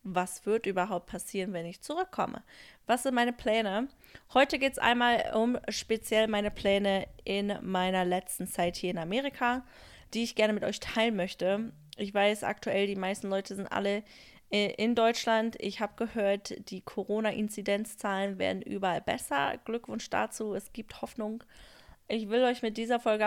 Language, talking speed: German, 160 wpm